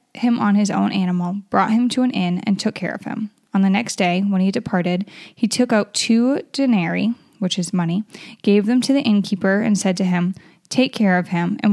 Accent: American